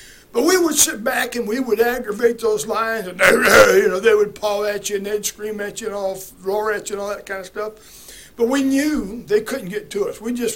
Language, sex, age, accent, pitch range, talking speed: English, male, 60-79, American, 210-265 Hz, 245 wpm